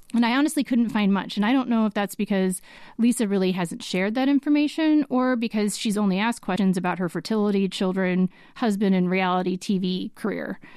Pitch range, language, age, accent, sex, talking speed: 190-245 Hz, English, 30-49, American, female, 190 wpm